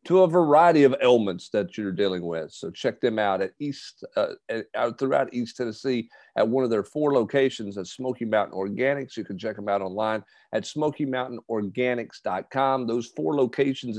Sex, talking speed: male, 180 wpm